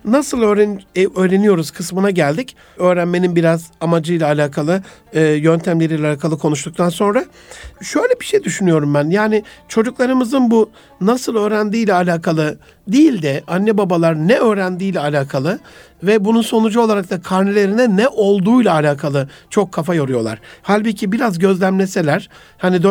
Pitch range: 165-220 Hz